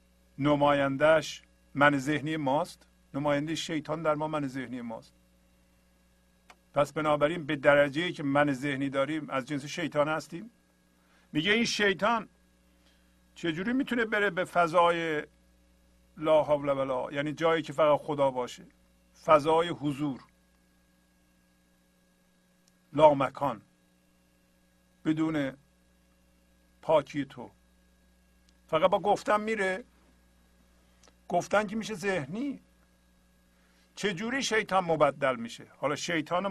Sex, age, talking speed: male, 50-69, 100 wpm